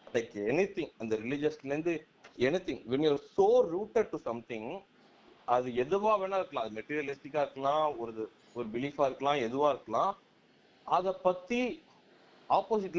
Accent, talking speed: native, 150 wpm